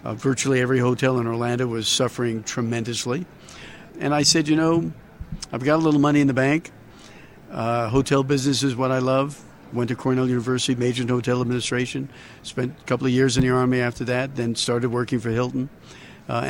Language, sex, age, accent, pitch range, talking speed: English, male, 50-69, American, 120-135 Hz, 195 wpm